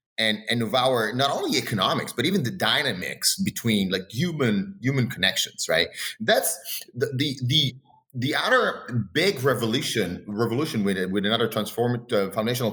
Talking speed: 145 wpm